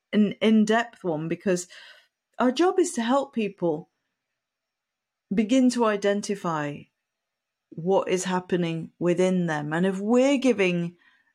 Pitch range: 170-205 Hz